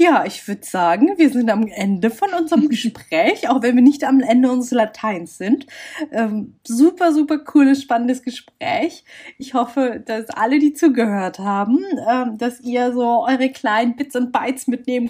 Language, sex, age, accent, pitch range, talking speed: German, female, 20-39, German, 190-255 Hz, 170 wpm